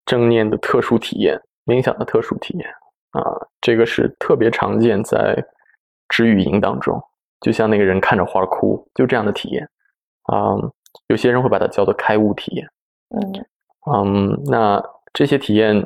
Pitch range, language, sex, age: 105-120 Hz, Chinese, male, 20-39